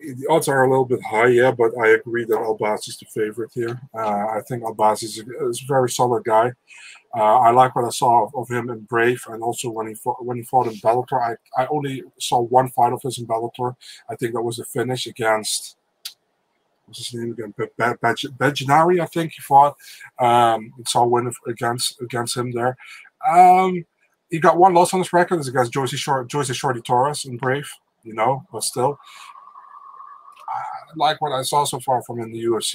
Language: English